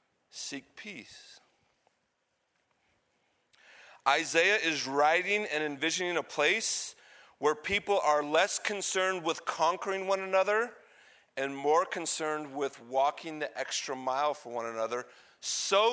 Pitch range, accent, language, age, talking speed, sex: 135-180 Hz, American, English, 40-59, 115 wpm, male